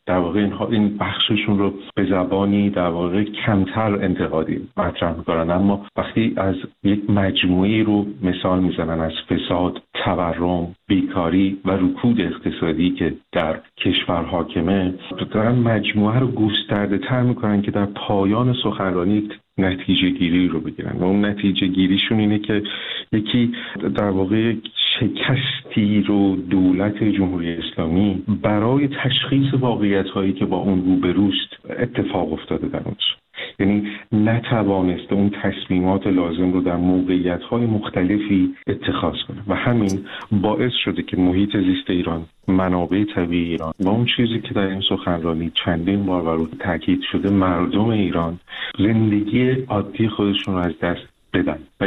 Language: Persian